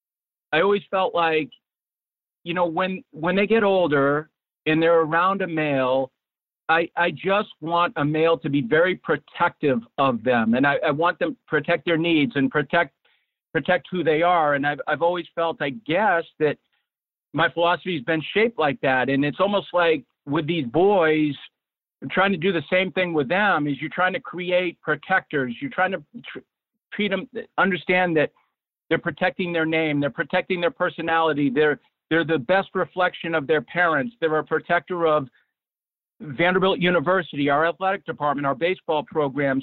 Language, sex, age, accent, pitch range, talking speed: English, male, 50-69, American, 155-185 Hz, 175 wpm